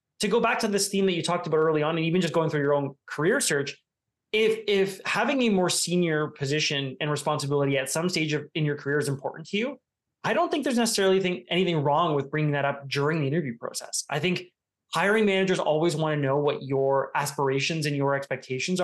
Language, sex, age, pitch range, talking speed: English, male, 20-39, 145-180 Hz, 225 wpm